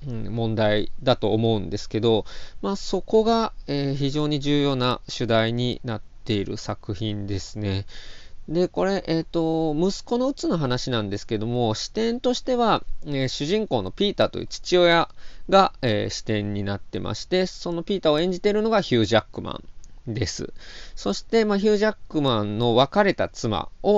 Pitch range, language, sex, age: 110-180 Hz, Japanese, male, 20-39